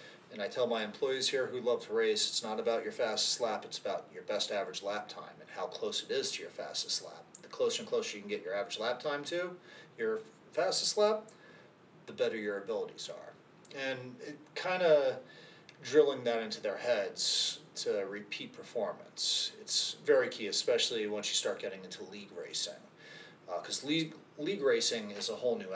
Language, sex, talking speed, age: English, male, 190 wpm, 30-49